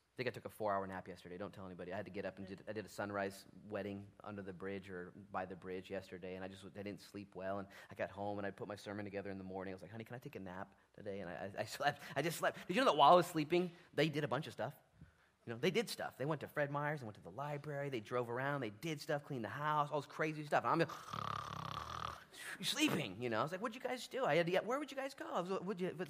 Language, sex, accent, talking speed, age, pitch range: English, male, American, 315 wpm, 30-49, 105-150 Hz